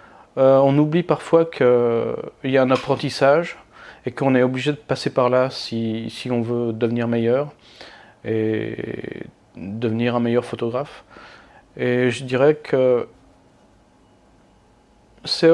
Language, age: French, 40-59